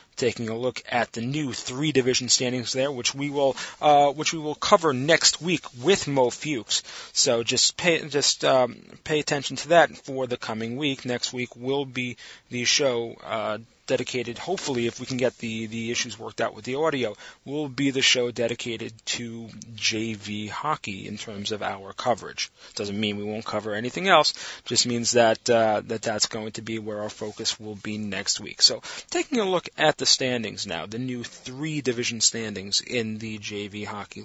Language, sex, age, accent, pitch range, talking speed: English, male, 30-49, American, 115-150 Hz, 195 wpm